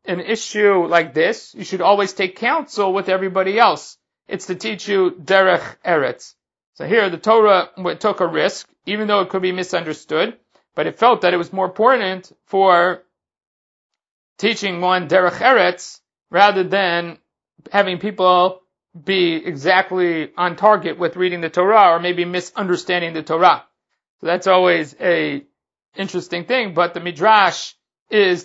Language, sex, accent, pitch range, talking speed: English, male, American, 170-200 Hz, 150 wpm